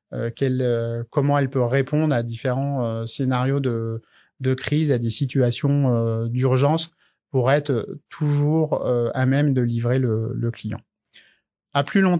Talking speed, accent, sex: 160 wpm, French, male